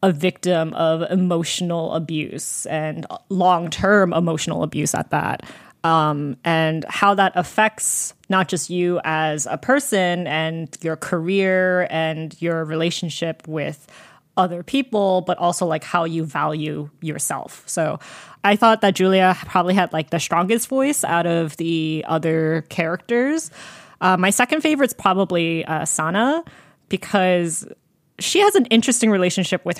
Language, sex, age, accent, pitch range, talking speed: English, female, 20-39, American, 165-190 Hz, 135 wpm